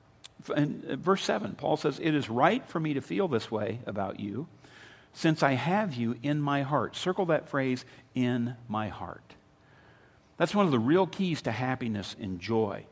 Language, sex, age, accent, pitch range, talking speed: English, male, 50-69, American, 120-175 Hz, 180 wpm